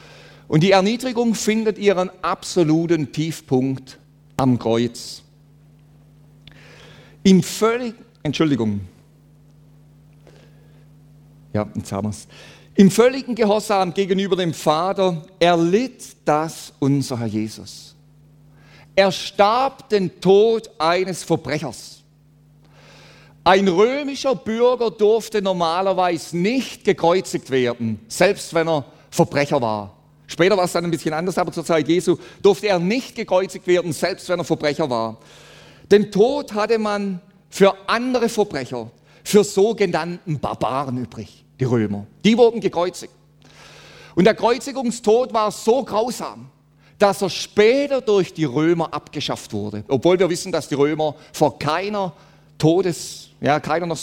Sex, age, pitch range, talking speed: male, 50-69, 145-195 Hz, 115 wpm